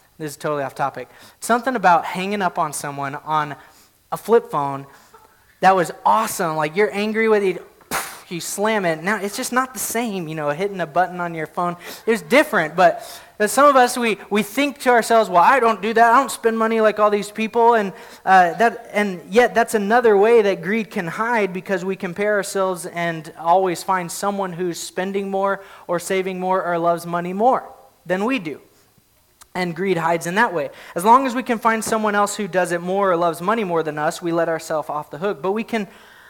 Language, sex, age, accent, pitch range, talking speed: English, male, 30-49, American, 170-220 Hz, 215 wpm